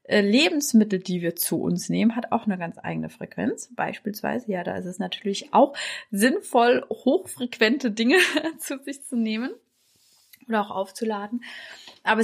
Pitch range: 190-240 Hz